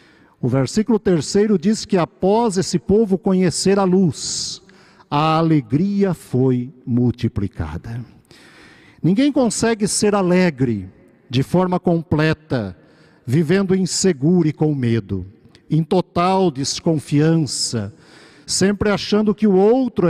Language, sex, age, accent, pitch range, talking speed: Portuguese, male, 50-69, Brazilian, 140-190 Hz, 105 wpm